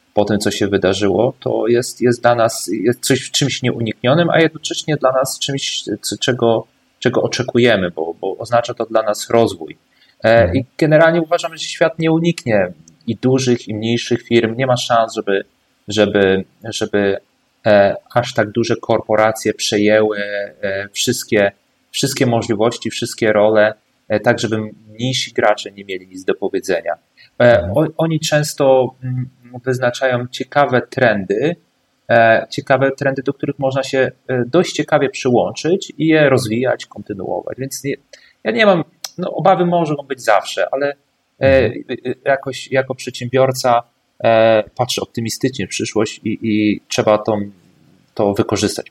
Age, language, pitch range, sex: 30-49, Polish, 110-135 Hz, male